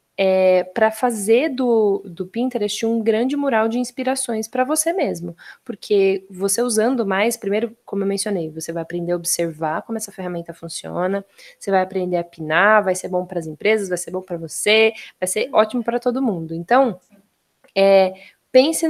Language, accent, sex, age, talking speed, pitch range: Portuguese, Brazilian, female, 20-39, 180 wpm, 185-245 Hz